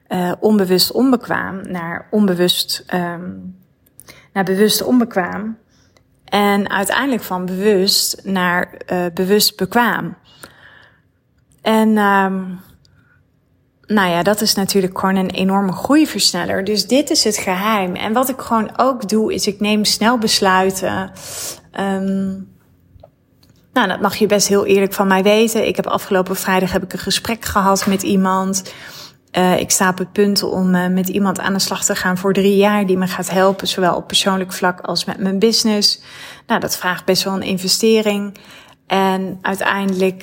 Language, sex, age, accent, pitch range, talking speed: Dutch, female, 30-49, Dutch, 185-205 Hz, 155 wpm